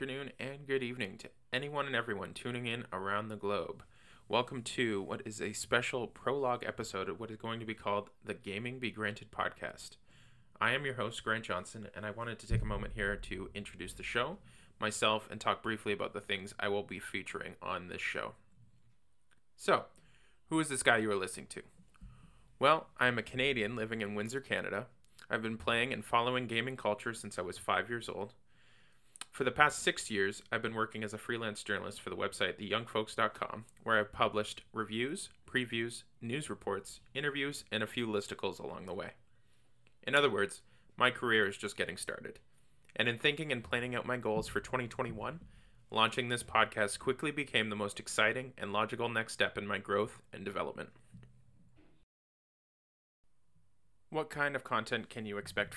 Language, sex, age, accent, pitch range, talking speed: English, male, 20-39, American, 105-125 Hz, 185 wpm